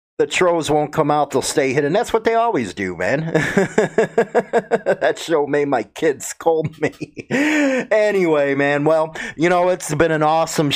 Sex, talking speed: male, 165 wpm